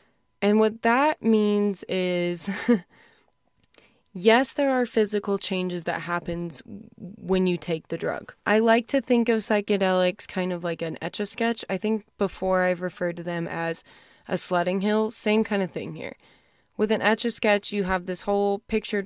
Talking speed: 165 wpm